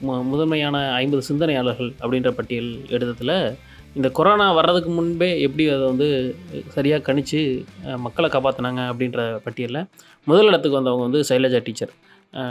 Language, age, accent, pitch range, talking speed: Tamil, 20-39, native, 130-165 Hz, 125 wpm